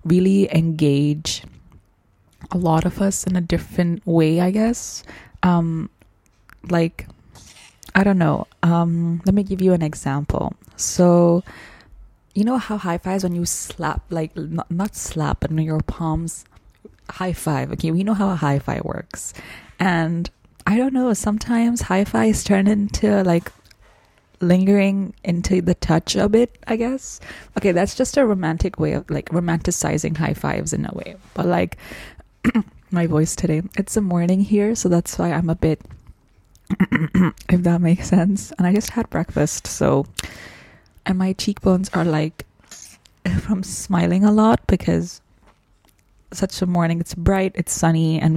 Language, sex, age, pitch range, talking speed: English, female, 20-39, 160-195 Hz, 155 wpm